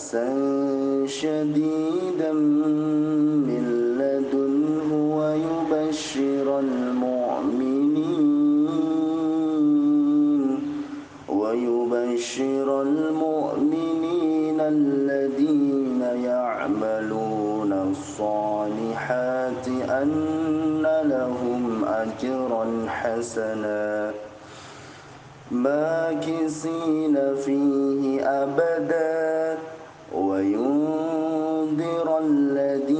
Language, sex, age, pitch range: Indonesian, male, 30-49, 135-160 Hz